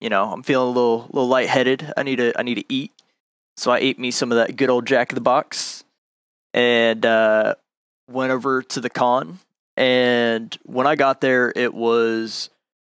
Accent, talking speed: American, 195 wpm